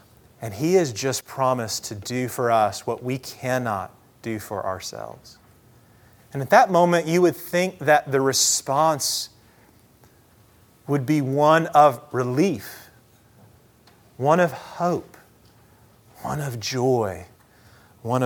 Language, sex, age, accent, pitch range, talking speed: English, male, 30-49, American, 115-145 Hz, 120 wpm